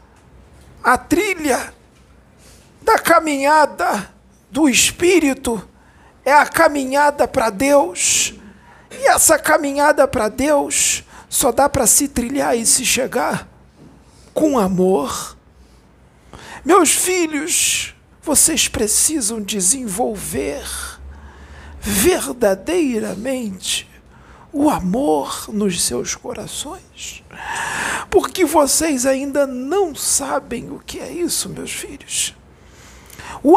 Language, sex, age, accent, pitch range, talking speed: Portuguese, male, 50-69, Brazilian, 200-300 Hz, 90 wpm